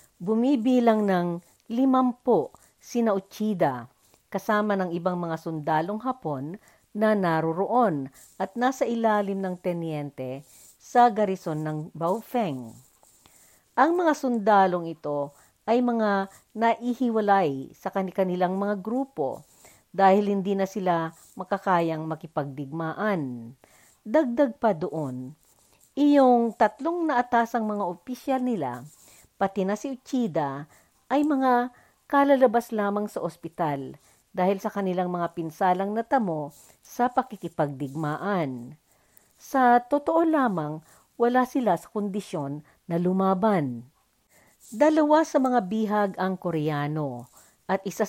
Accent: native